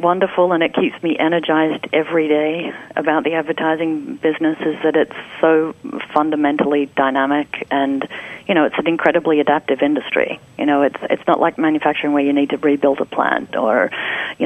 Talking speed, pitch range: 175 wpm, 145-165 Hz